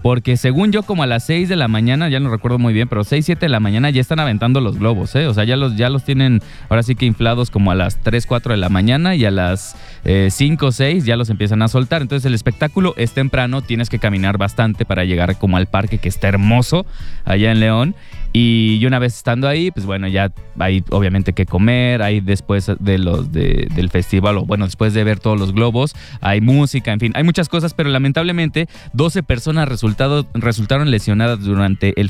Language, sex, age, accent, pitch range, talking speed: English, male, 20-39, Mexican, 105-135 Hz, 225 wpm